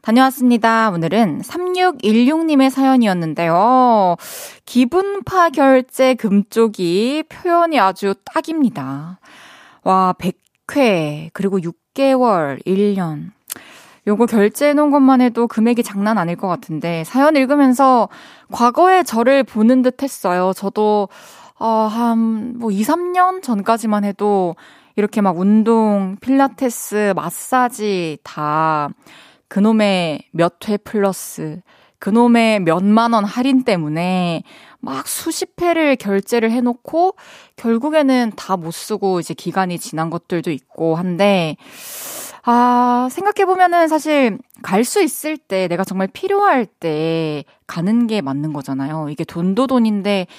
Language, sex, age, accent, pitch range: Korean, female, 20-39, native, 180-260 Hz